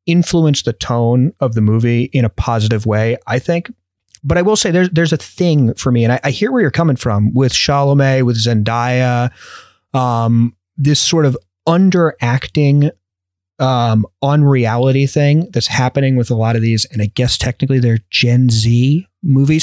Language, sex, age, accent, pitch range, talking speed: English, male, 30-49, American, 115-150 Hz, 175 wpm